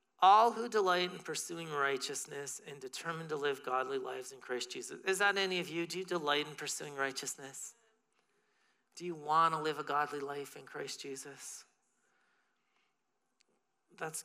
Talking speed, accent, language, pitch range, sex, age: 160 wpm, American, English, 140-210 Hz, male, 40-59